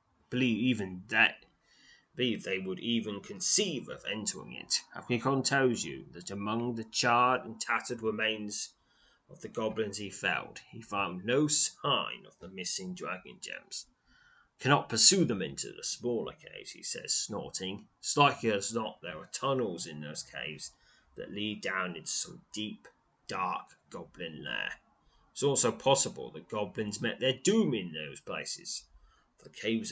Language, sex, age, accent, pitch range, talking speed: English, male, 30-49, British, 100-125 Hz, 150 wpm